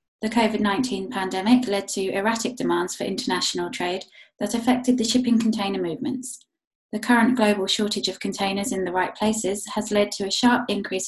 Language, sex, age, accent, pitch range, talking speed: English, female, 20-39, British, 190-235 Hz, 175 wpm